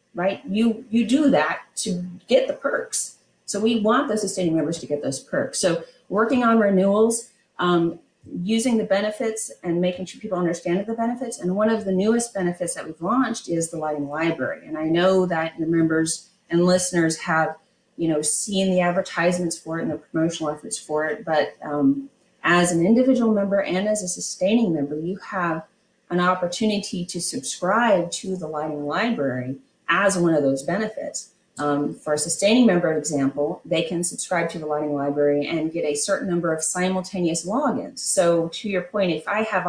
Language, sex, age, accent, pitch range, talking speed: English, female, 30-49, American, 165-215 Hz, 185 wpm